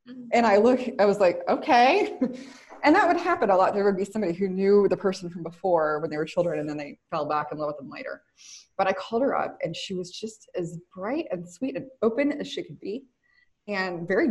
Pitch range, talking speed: 180-270 Hz, 245 wpm